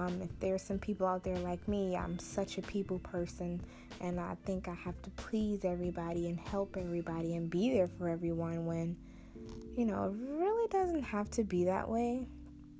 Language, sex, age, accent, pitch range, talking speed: English, female, 20-39, American, 170-200 Hz, 190 wpm